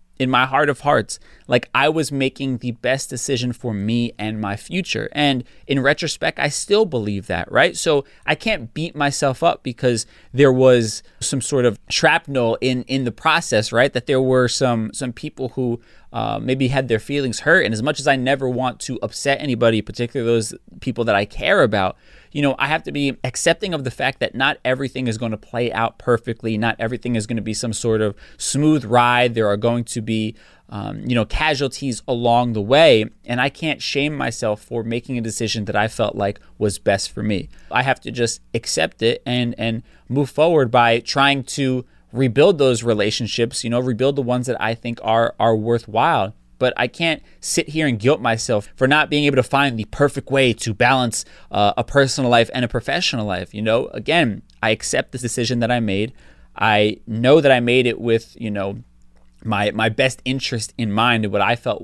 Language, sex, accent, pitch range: English, male, American, 115-135 Hz